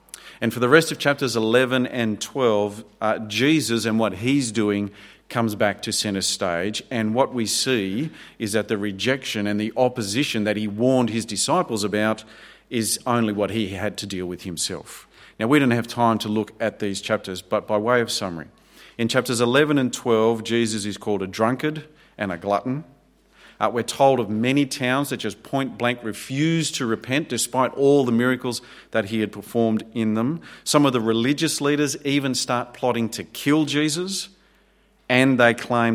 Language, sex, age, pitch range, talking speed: English, male, 40-59, 105-130 Hz, 185 wpm